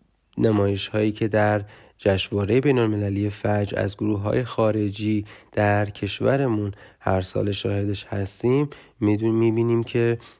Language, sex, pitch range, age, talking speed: Persian, male, 105-130 Hz, 30-49, 115 wpm